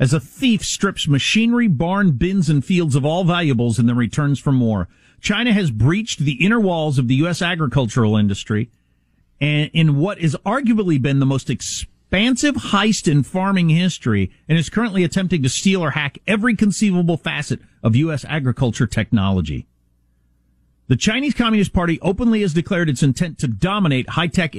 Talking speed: 165 wpm